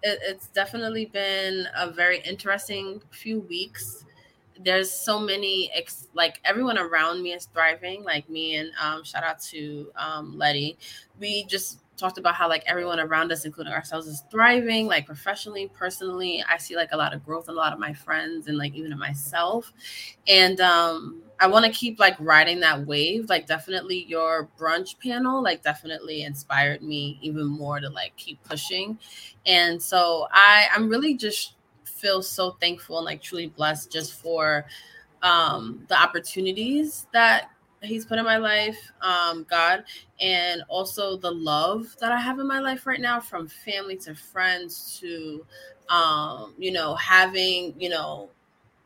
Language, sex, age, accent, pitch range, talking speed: English, female, 20-39, American, 160-200 Hz, 165 wpm